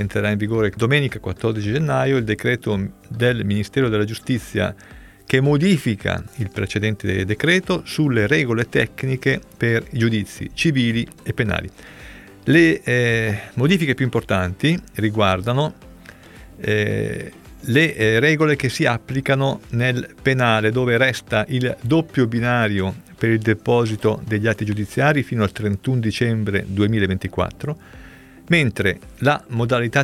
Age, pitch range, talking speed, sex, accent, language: 40-59, 105-135 Hz, 120 wpm, male, native, Italian